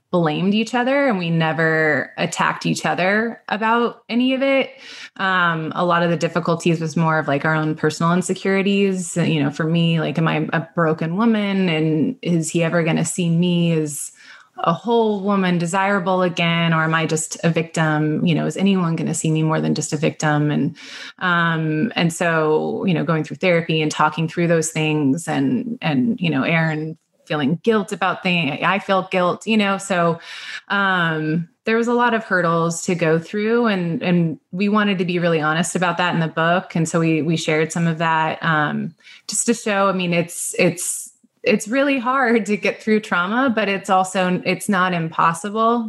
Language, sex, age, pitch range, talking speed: English, female, 20-39, 160-195 Hz, 195 wpm